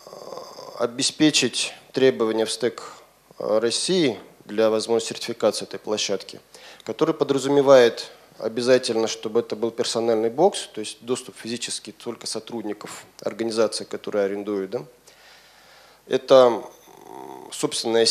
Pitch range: 115-145 Hz